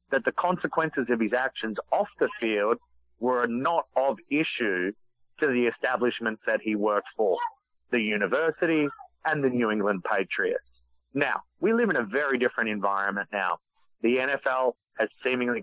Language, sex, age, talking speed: English, male, 30-49, 155 wpm